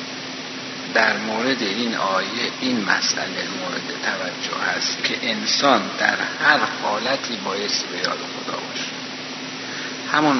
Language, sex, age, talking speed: Persian, male, 60-79, 115 wpm